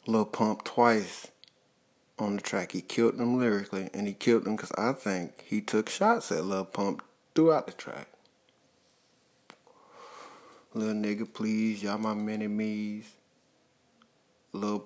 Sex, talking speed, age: male, 135 wpm, 20-39